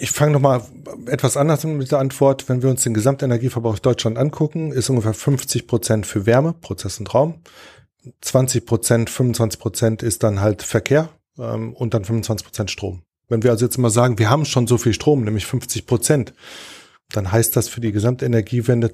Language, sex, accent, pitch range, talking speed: German, male, German, 110-130 Hz, 190 wpm